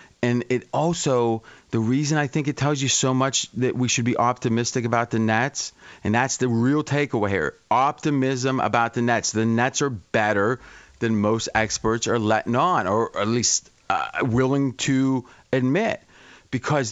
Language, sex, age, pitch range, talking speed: English, male, 30-49, 115-140 Hz, 170 wpm